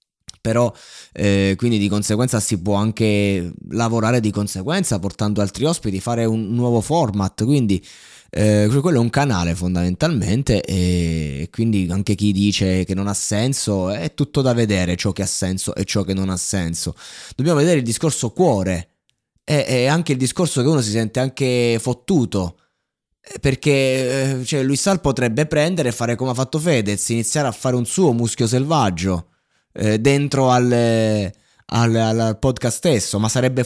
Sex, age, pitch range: male, 20-39, 100-130 Hz